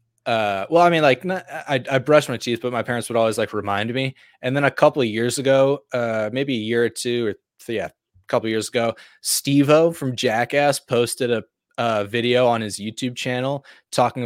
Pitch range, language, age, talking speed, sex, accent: 115-130 Hz, English, 20-39, 220 wpm, male, American